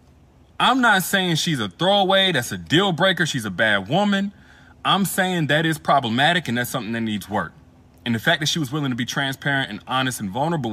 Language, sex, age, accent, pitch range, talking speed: English, male, 30-49, American, 130-190 Hz, 220 wpm